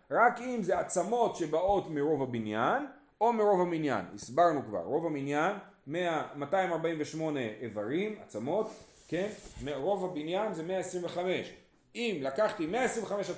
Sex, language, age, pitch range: male, Hebrew, 30-49, 135-205 Hz